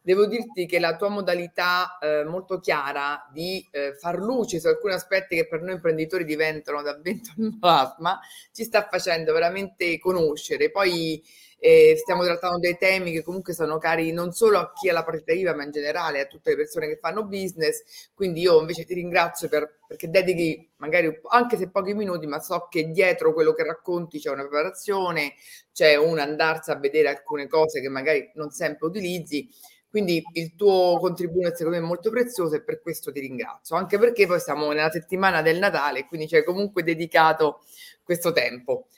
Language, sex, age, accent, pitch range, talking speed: Italian, female, 30-49, native, 160-210 Hz, 185 wpm